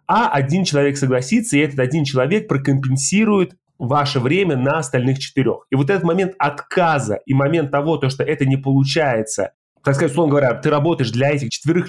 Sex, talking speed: male, 180 wpm